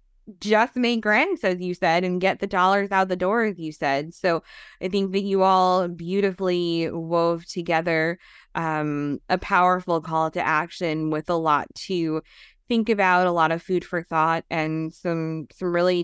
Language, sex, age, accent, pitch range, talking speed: English, female, 20-39, American, 165-195 Hz, 175 wpm